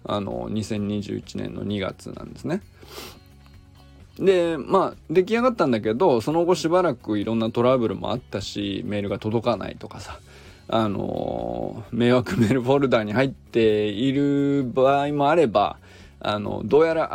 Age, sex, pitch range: 20-39, male, 105-140 Hz